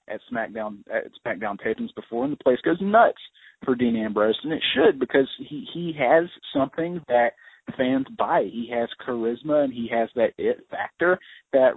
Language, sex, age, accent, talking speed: English, male, 30-49, American, 180 wpm